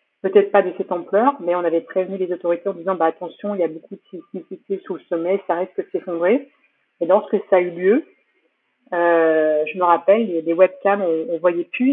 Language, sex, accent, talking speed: French, female, French, 235 wpm